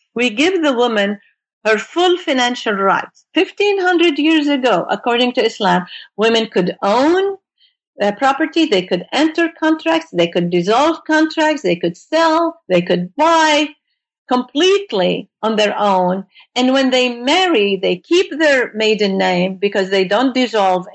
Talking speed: 145 wpm